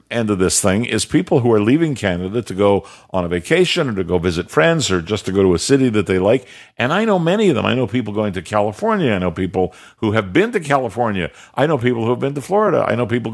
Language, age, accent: English, 50-69, American